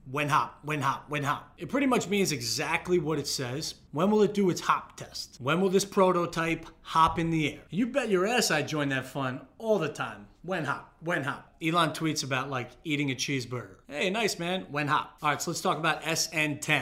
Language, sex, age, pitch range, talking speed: English, male, 30-49, 135-180 Hz, 225 wpm